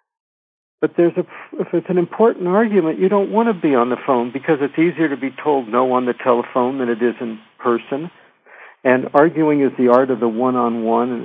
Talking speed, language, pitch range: 210 wpm, English, 125-160 Hz